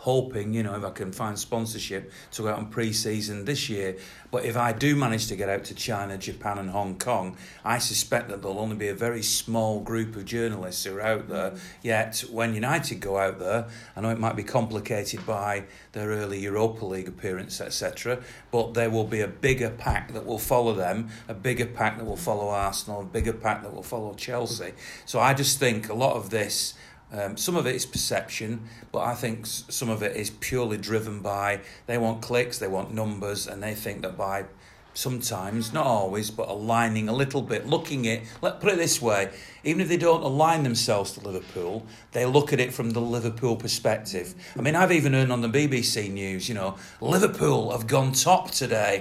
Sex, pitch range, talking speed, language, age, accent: male, 100-120 Hz, 210 wpm, English, 40-59, British